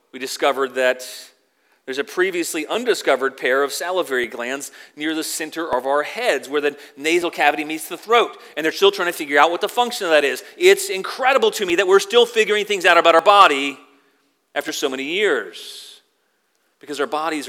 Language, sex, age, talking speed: English, male, 40-59, 195 wpm